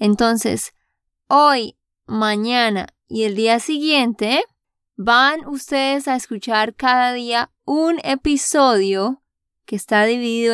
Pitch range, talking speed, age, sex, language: 220-280 Hz, 100 wpm, 20-39, female, Spanish